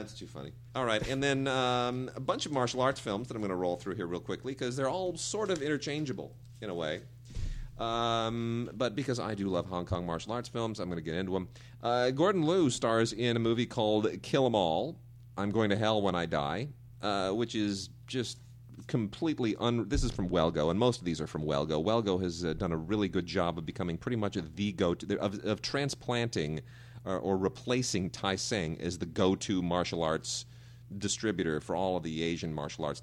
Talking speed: 215 wpm